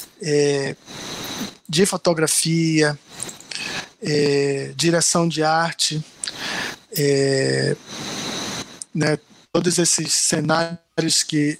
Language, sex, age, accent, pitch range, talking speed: Portuguese, male, 20-39, Brazilian, 155-195 Hz, 50 wpm